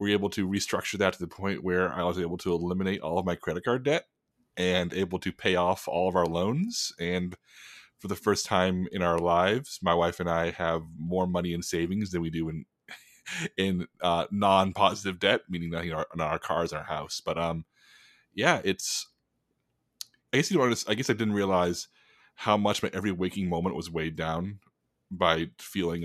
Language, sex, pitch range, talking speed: English, male, 85-95 Hz, 205 wpm